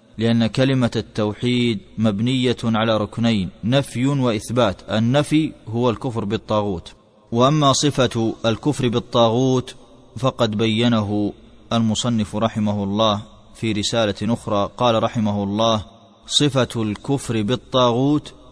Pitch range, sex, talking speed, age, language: 110-125 Hz, male, 95 wpm, 30-49, Arabic